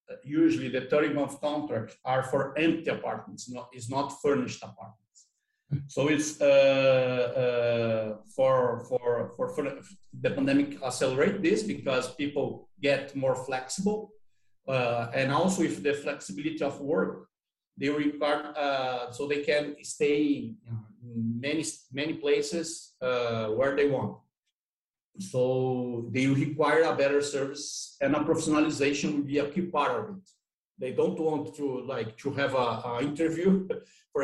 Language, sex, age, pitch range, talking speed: English, male, 50-69, 125-160 Hz, 140 wpm